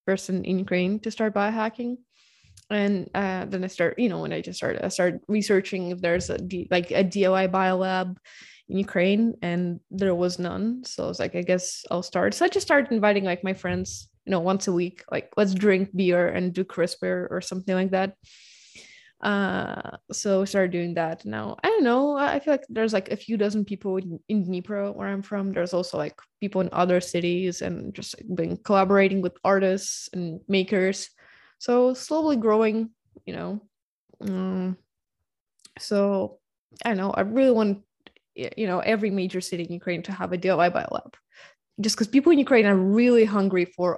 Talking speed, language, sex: 190 wpm, Ukrainian, female